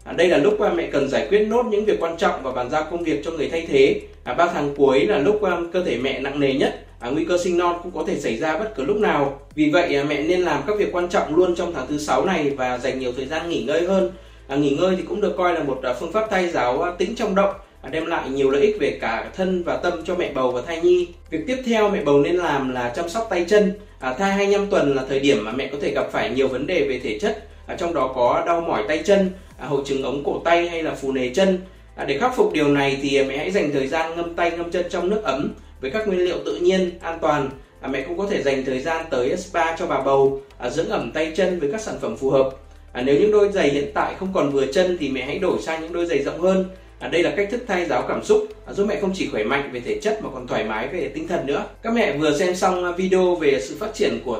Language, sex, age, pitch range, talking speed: Vietnamese, male, 20-39, 140-190 Hz, 275 wpm